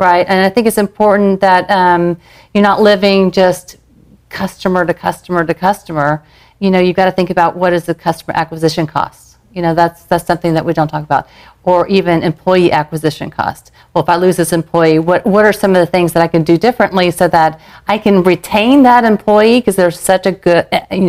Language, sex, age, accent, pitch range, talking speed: English, female, 40-59, American, 165-195 Hz, 215 wpm